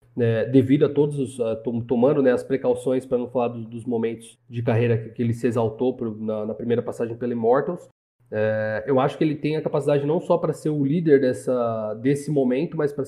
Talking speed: 225 wpm